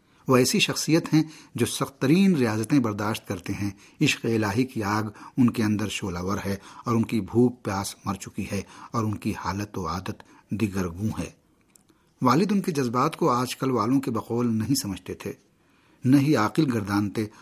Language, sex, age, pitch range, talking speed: Urdu, male, 50-69, 105-130 Hz, 180 wpm